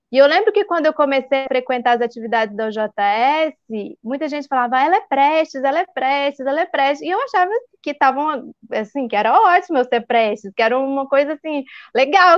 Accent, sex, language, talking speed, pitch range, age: Brazilian, female, Portuguese, 215 wpm, 230-295 Hz, 20-39